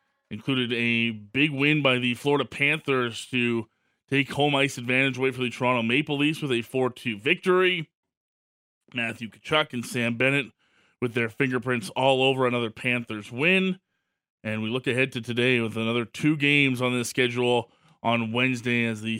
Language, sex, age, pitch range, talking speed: English, male, 20-39, 120-140 Hz, 170 wpm